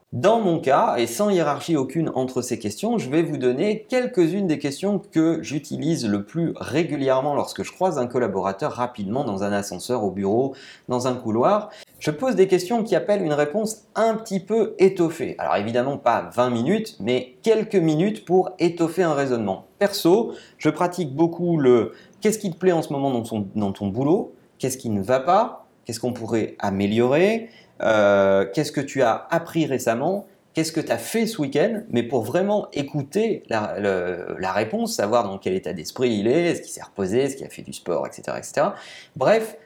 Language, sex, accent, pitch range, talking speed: French, male, French, 125-195 Hz, 190 wpm